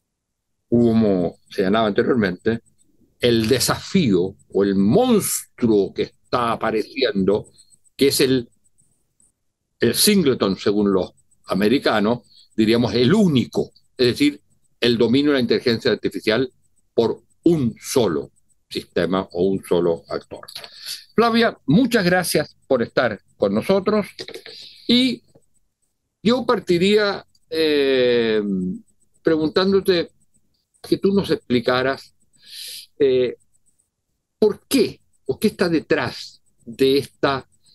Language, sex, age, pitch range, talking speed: Spanish, male, 60-79, 115-180 Hz, 100 wpm